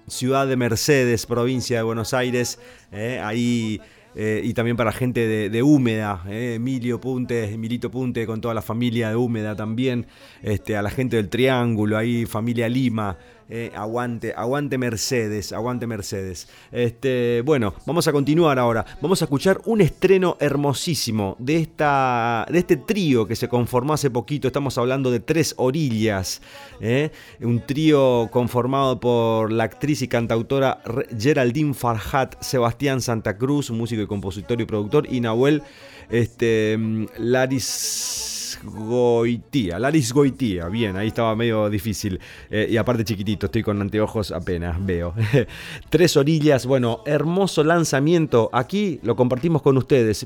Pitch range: 110-135 Hz